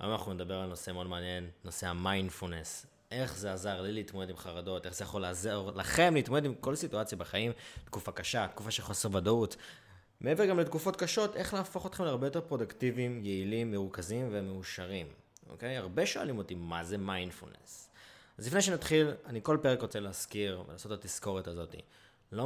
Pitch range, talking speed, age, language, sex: 90-115 Hz, 175 wpm, 20-39, Hebrew, male